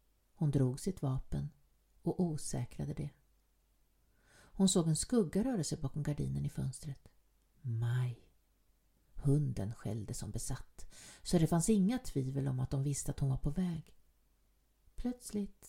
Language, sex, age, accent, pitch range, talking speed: Swedish, female, 50-69, native, 130-180 Hz, 140 wpm